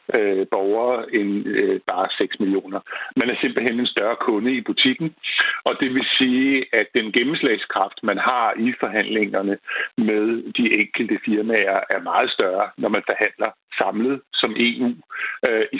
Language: Danish